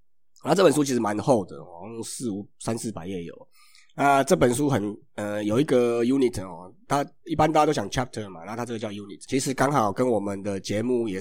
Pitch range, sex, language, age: 95-125 Hz, male, Chinese, 30-49